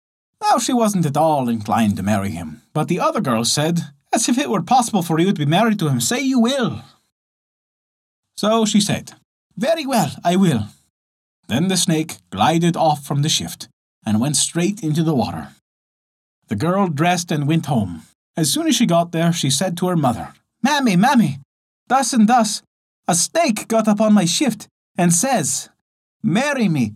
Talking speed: 185 wpm